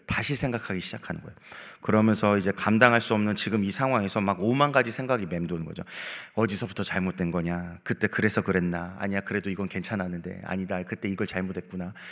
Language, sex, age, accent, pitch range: Korean, male, 30-49, native, 100-155 Hz